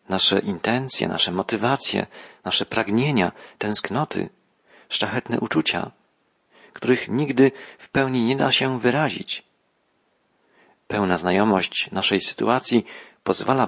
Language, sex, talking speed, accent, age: Polish, male, 95 wpm, native, 40-59